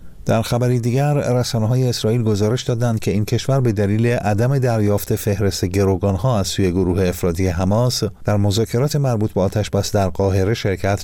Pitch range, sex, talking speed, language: 95-115 Hz, male, 165 wpm, Persian